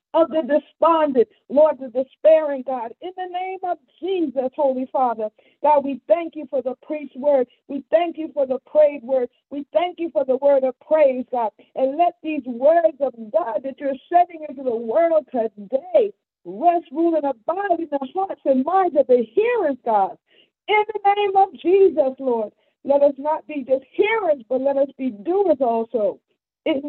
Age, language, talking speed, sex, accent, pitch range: 50-69, English, 185 wpm, female, American, 250-315 Hz